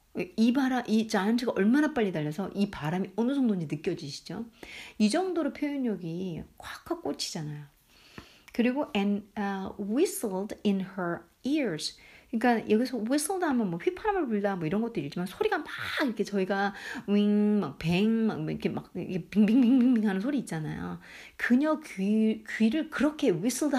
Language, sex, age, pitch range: Korean, female, 40-59, 195-275 Hz